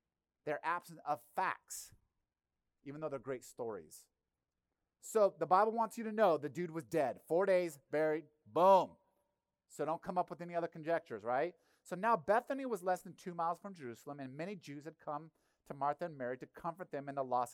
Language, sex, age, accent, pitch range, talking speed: English, male, 30-49, American, 120-170 Hz, 200 wpm